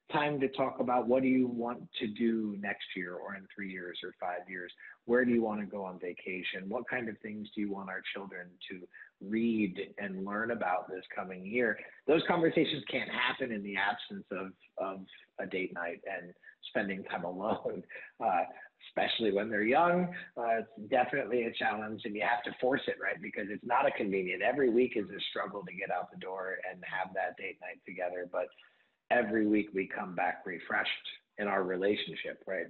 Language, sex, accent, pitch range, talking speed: English, male, American, 95-125 Hz, 200 wpm